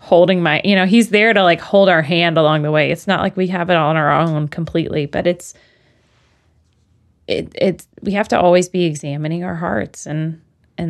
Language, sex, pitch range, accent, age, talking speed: English, female, 155-185 Hz, American, 30-49, 210 wpm